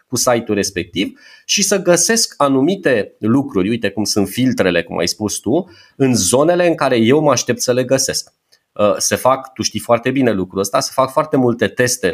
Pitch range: 115-150 Hz